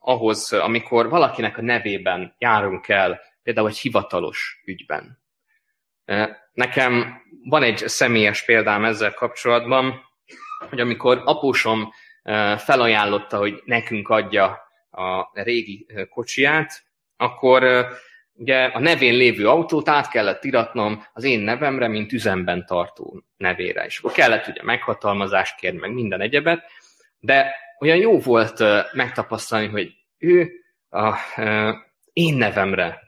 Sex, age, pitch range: male, 20-39, 105-135 Hz